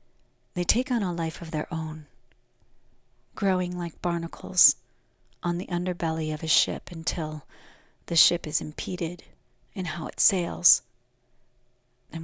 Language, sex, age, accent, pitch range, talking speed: English, female, 40-59, American, 125-175 Hz, 130 wpm